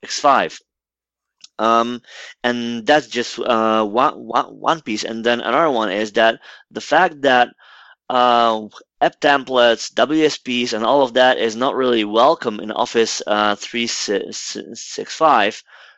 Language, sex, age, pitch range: English, male, 30-49, 110-135 Hz